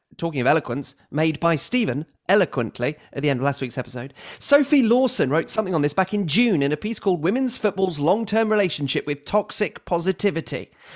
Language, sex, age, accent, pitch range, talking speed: English, male, 30-49, British, 150-205 Hz, 185 wpm